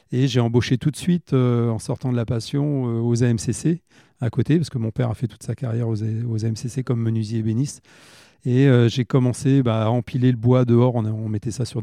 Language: French